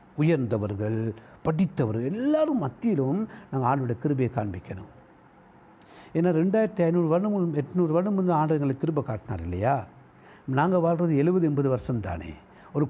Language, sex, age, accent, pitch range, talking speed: Tamil, male, 60-79, native, 120-180 Hz, 125 wpm